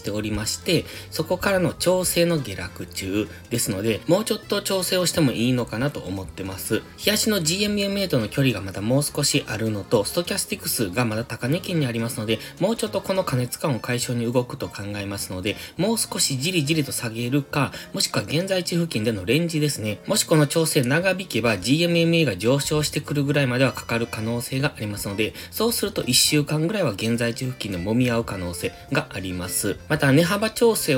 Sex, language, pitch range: male, Japanese, 110-155 Hz